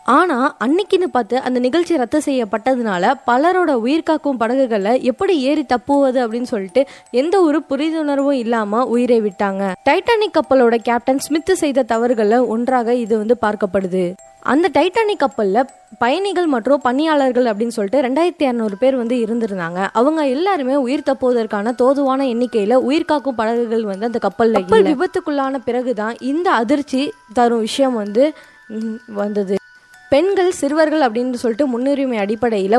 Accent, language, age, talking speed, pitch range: native, Tamil, 20-39, 125 wpm, 225-280 Hz